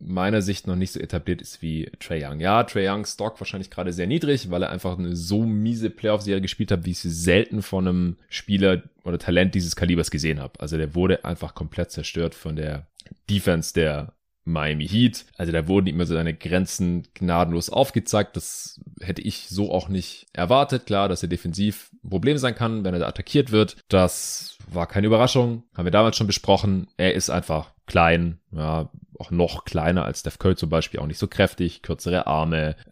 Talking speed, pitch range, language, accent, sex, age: 200 wpm, 80-100 Hz, German, German, male, 30-49